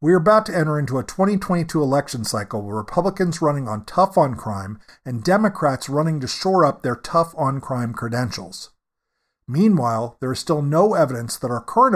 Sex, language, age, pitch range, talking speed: male, English, 50-69, 130-185 Hz, 170 wpm